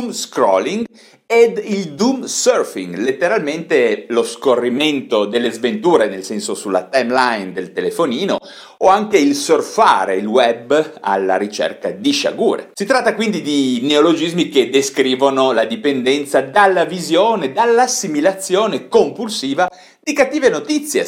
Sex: male